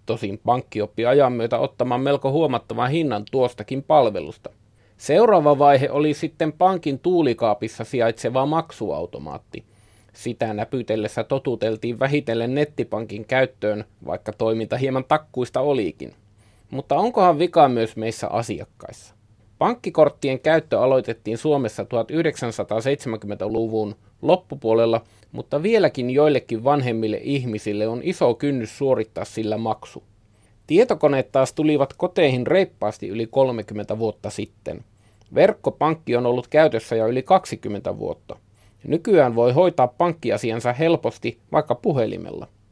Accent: native